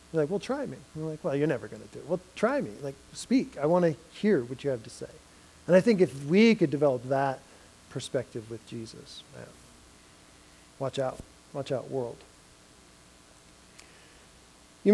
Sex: male